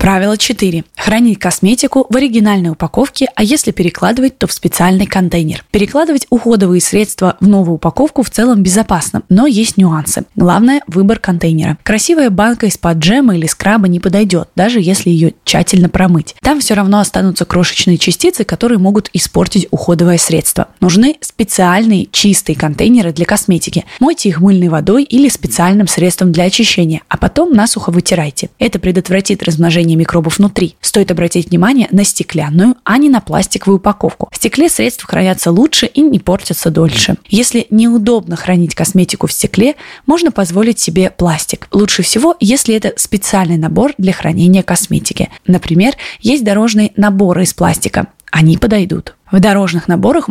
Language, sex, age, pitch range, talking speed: Russian, female, 20-39, 175-225 Hz, 150 wpm